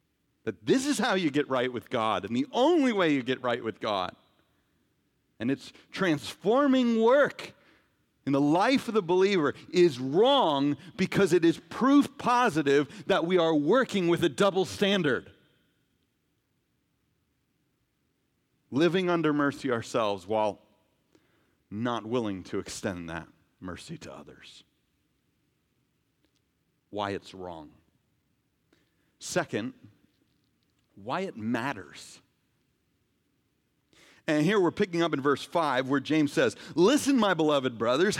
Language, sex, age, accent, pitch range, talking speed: English, male, 40-59, American, 150-230 Hz, 125 wpm